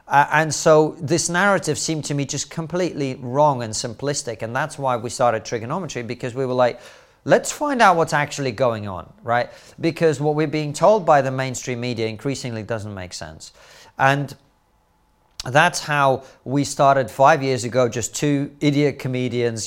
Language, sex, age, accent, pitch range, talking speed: English, male, 40-59, British, 110-145 Hz, 170 wpm